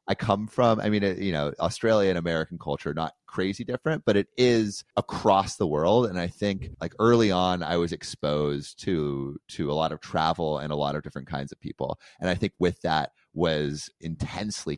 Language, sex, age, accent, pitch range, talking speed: English, male, 30-49, American, 75-95 Hz, 200 wpm